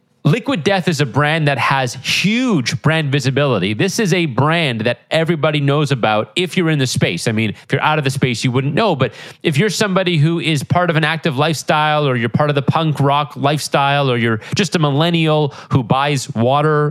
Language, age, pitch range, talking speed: English, 30-49, 140-180 Hz, 215 wpm